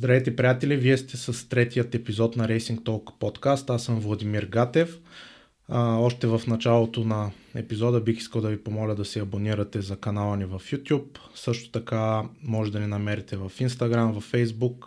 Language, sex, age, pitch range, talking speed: Bulgarian, male, 20-39, 110-120 Hz, 180 wpm